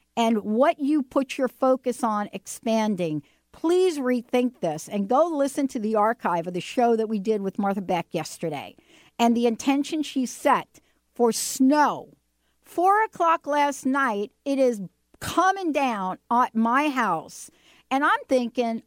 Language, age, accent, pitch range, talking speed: English, 60-79, American, 215-275 Hz, 155 wpm